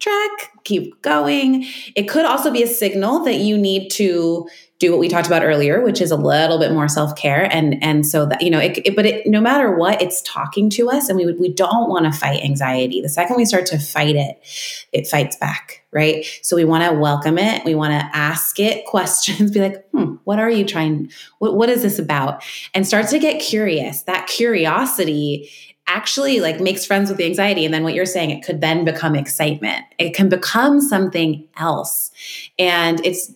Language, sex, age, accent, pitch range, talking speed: English, female, 20-39, American, 155-205 Hz, 210 wpm